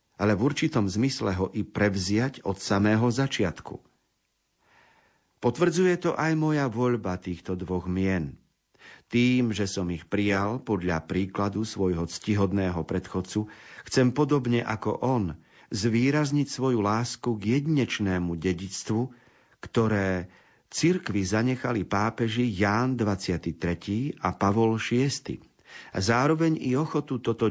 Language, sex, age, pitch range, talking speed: Slovak, male, 50-69, 95-125 Hz, 115 wpm